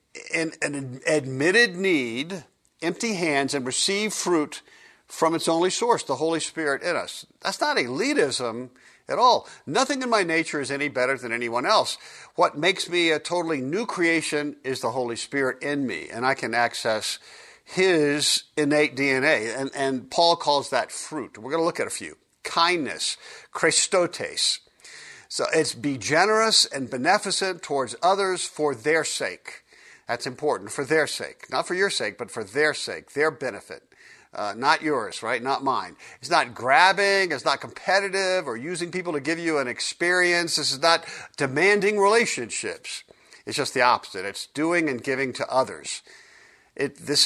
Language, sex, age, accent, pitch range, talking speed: English, male, 50-69, American, 135-190 Hz, 165 wpm